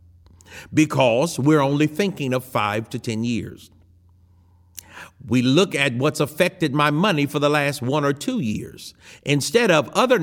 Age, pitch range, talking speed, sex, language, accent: 50-69, 135-185 Hz, 155 wpm, male, English, American